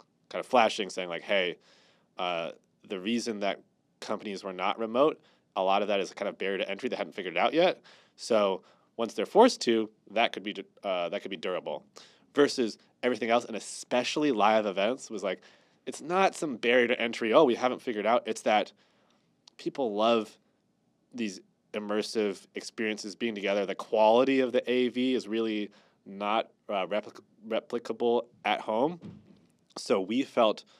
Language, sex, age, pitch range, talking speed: English, male, 20-39, 105-145 Hz, 175 wpm